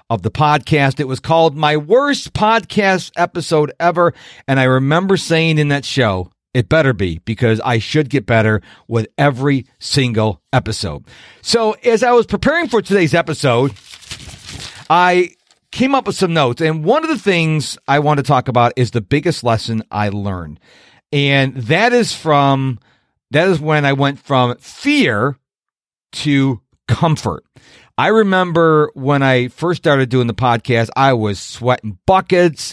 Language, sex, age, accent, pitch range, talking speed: English, male, 40-59, American, 125-170 Hz, 160 wpm